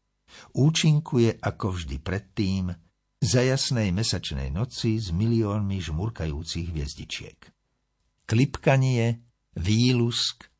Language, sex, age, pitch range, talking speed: Slovak, male, 60-79, 90-120 Hz, 80 wpm